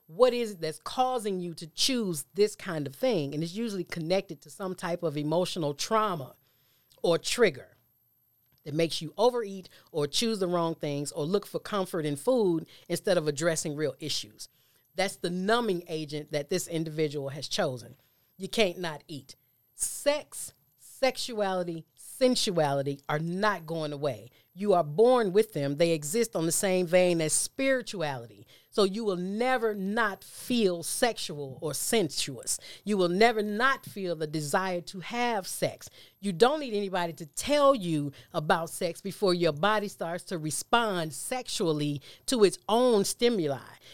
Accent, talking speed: American, 160 wpm